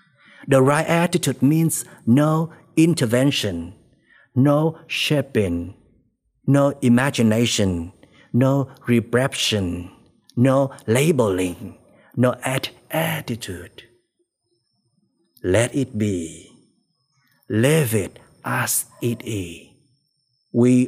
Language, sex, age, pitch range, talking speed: Vietnamese, male, 50-69, 115-160 Hz, 70 wpm